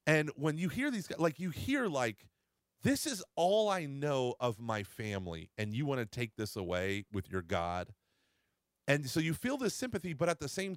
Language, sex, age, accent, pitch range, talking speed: English, male, 30-49, American, 110-155 Hz, 210 wpm